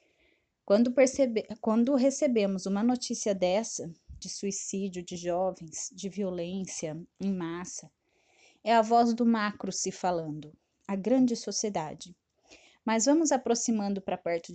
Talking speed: 120 wpm